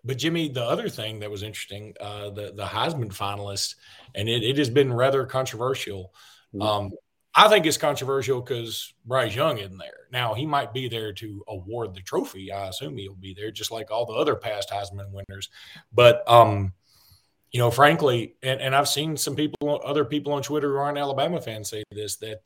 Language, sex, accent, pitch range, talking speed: English, male, American, 105-135 Hz, 200 wpm